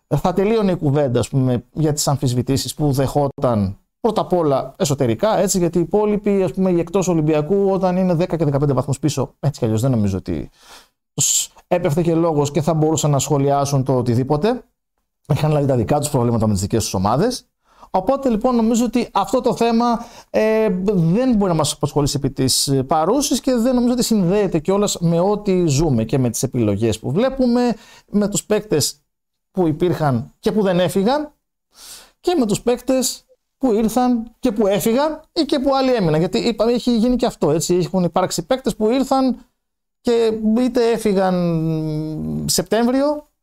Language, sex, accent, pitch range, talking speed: Greek, male, native, 140-230 Hz, 175 wpm